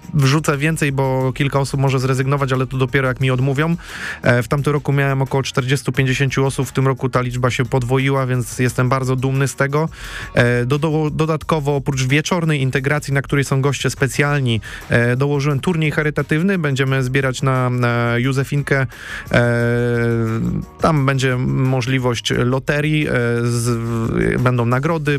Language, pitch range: Polish, 125-145 Hz